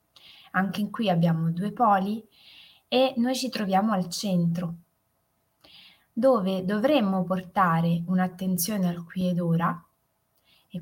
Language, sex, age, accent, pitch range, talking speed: Italian, female, 20-39, native, 180-230 Hz, 110 wpm